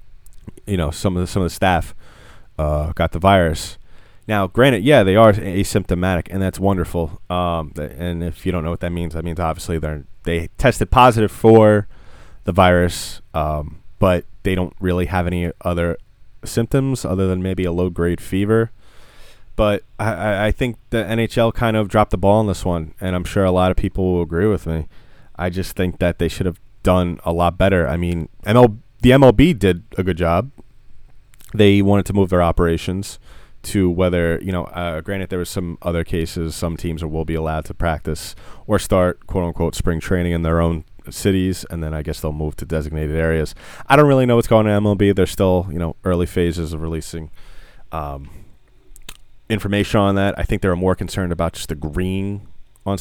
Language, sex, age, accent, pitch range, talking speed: English, male, 20-39, American, 85-105 Hz, 200 wpm